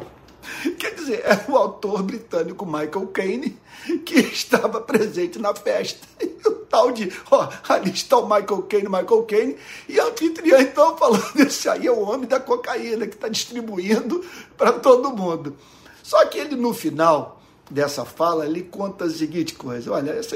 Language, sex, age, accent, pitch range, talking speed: Portuguese, male, 60-79, Brazilian, 165-260 Hz, 160 wpm